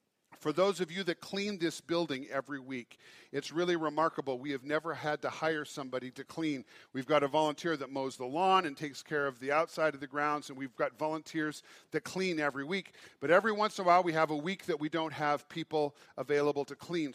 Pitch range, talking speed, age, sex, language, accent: 150-185 Hz, 225 wpm, 50-69, male, English, American